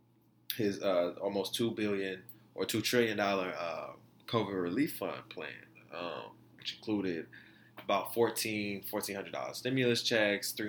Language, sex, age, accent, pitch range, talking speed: English, male, 20-39, American, 95-110 Hz, 135 wpm